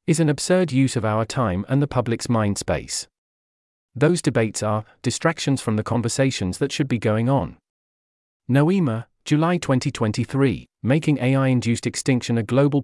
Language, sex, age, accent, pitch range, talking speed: English, male, 40-59, British, 110-140 Hz, 150 wpm